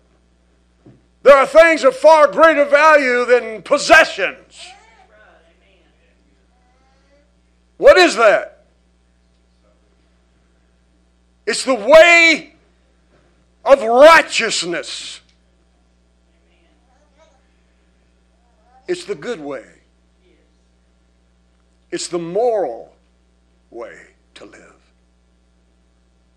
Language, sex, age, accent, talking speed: English, male, 60-79, American, 60 wpm